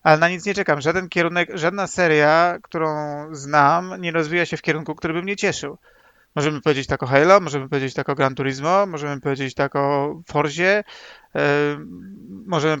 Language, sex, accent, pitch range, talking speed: Polish, male, native, 150-190 Hz, 175 wpm